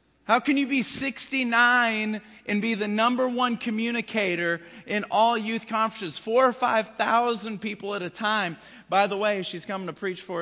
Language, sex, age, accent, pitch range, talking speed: English, male, 40-59, American, 195-250 Hz, 175 wpm